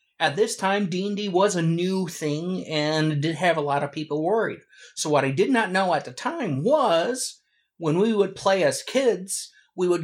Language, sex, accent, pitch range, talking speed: English, male, American, 145-220 Hz, 205 wpm